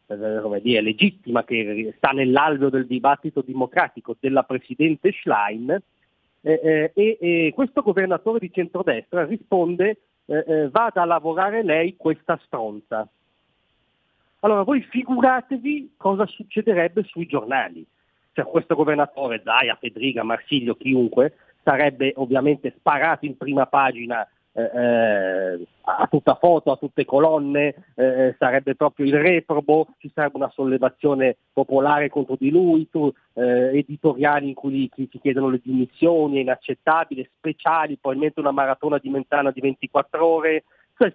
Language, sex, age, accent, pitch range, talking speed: Italian, male, 40-59, native, 130-170 Hz, 130 wpm